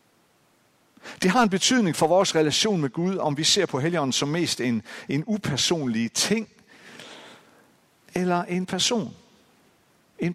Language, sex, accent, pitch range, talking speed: Danish, male, native, 125-190 Hz, 140 wpm